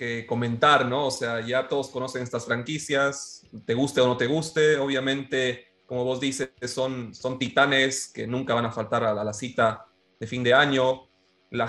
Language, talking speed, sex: Spanish, 195 wpm, male